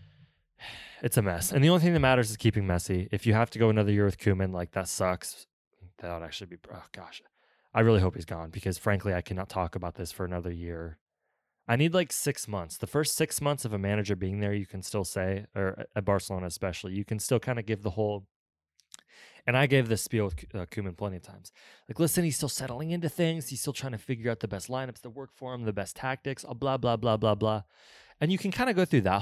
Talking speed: 250 wpm